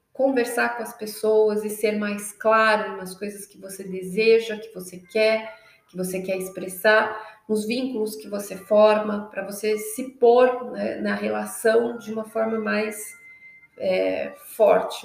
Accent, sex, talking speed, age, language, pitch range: Brazilian, female, 150 wpm, 30-49, Portuguese, 185-225 Hz